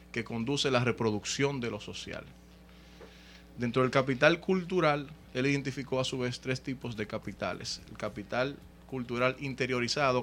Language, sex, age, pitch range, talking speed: Spanish, male, 30-49, 110-140 Hz, 140 wpm